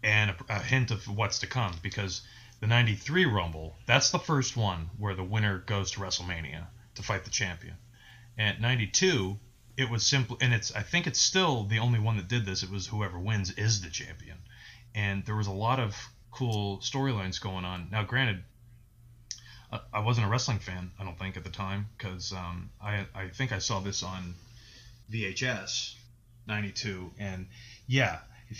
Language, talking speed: English, 185 wpm